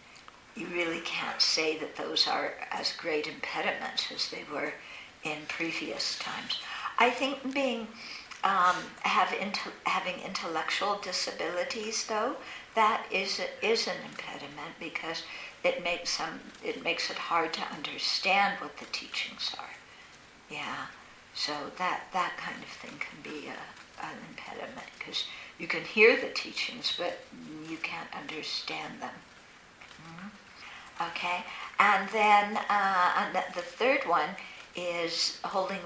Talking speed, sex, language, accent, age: 130 wpm, female, English, American, 60-79